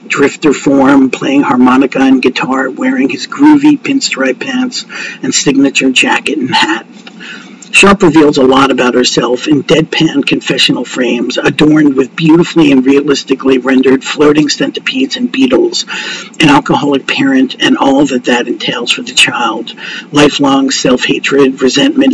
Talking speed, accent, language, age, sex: 135 wpm, American, English, 50-69, male